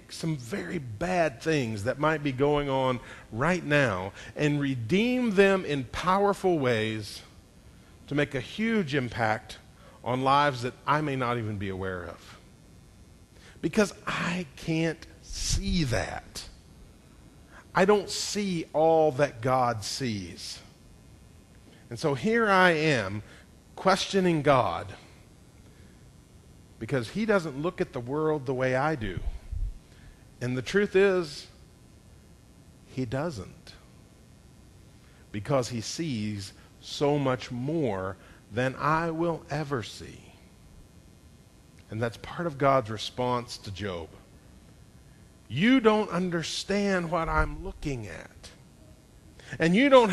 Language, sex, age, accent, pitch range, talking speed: English, male, 40-59, American, 105-175 Hz, 115 wpm